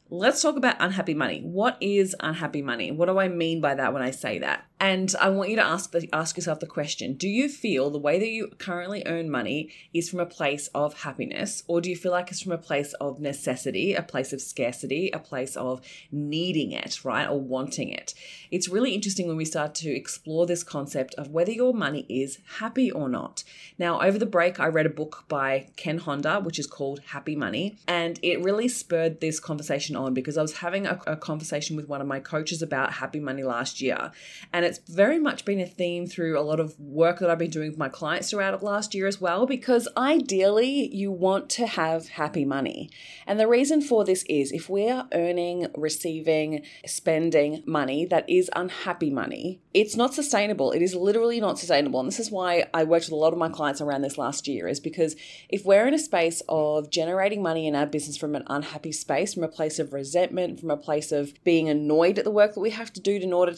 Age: 20-39